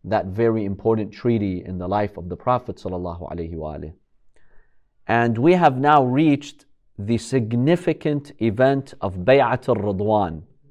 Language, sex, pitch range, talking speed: English, male, 105-145 Hz, 130 wpm